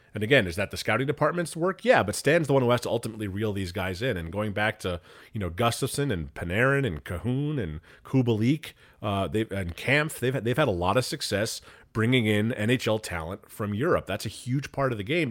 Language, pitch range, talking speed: English, 105-145 Hz, 230 wpm